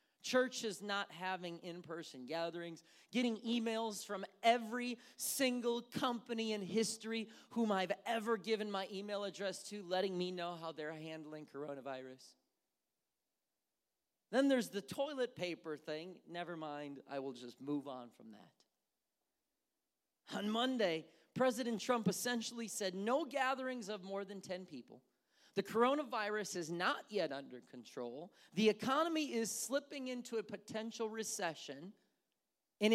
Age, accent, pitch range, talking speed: 40-59, American, 170-230 Hz, 130 wpm